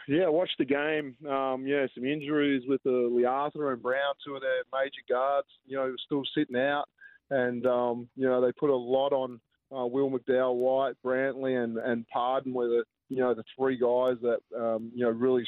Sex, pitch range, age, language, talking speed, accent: male, 125-140 Hz, 20-39, English, 200 wpm, Australian